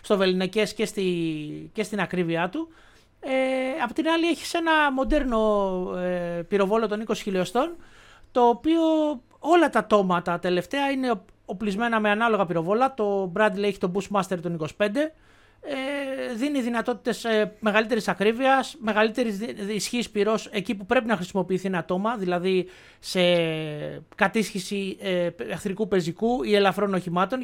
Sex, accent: male, native